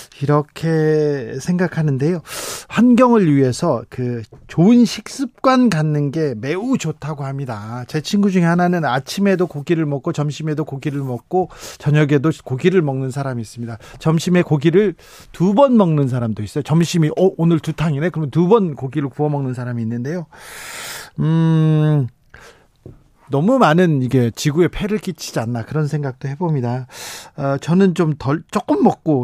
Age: 40-59